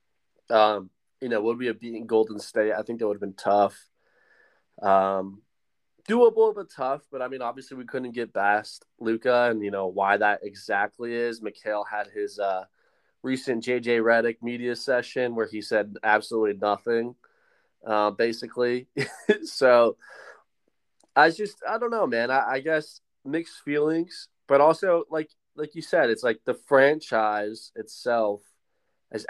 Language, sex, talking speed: English, male, 155 wpm